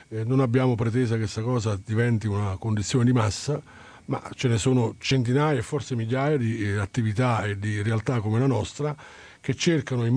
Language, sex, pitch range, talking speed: Italian, male, 110-130 Hz, 185 wpm